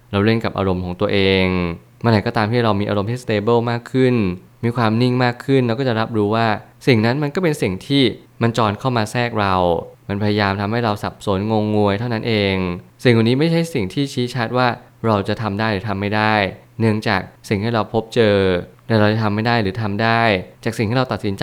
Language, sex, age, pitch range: Thai, male, 20-39, 100-120 Hz